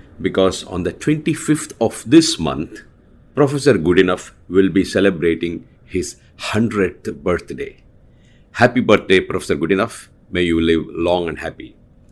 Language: English